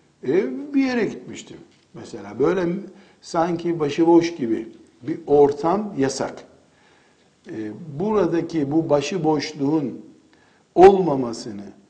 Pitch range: 135-170 Hz